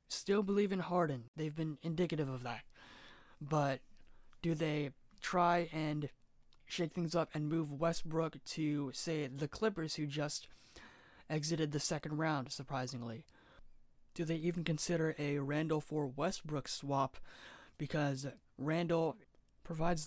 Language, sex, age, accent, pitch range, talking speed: English, male, 20-39, American, 145-170 Hz, 130 wpm